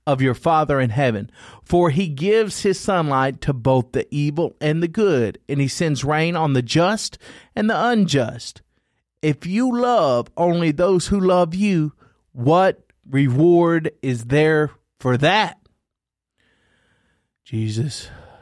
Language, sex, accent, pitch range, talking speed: English, male, American, 130-175 Hz, 135 wpm